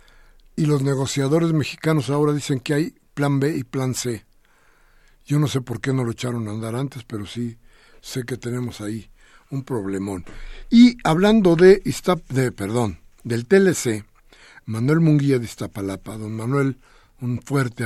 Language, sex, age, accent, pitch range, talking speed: Spanish, male, 60-79, Mexican, 115-145 Hz, 160 wpm